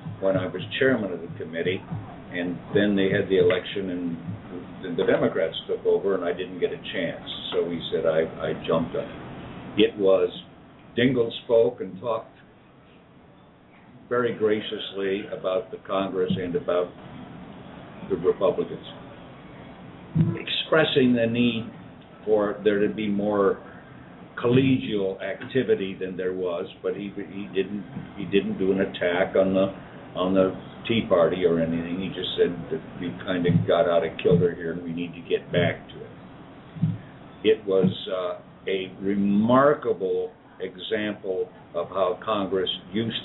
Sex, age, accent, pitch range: male, 60-79, American, 90-115 Hz